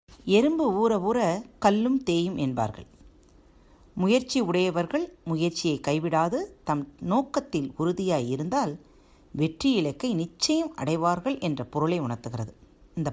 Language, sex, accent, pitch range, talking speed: Tamil, female, native, 155-230 Hz, 100 wpm